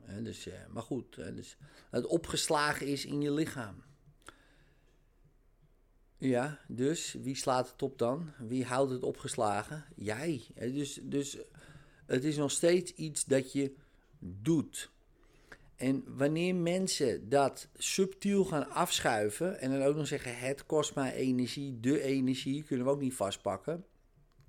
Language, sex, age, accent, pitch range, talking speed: Dutch, male, 50-69, Dutch, 120-150 Hz, 130 wpm